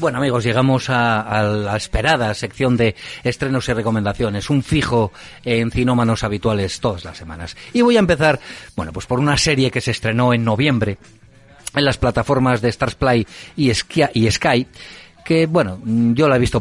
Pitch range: 105-140 Hz